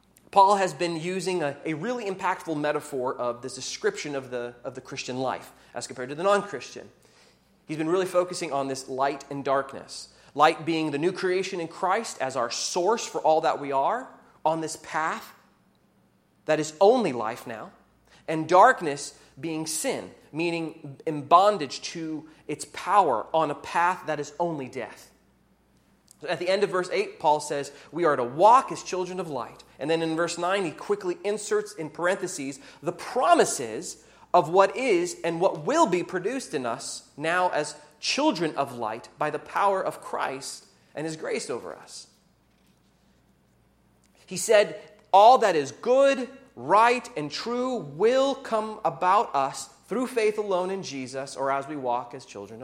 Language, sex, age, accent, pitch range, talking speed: English, male, 30-49, American, 145-195 Hz, 170 wpm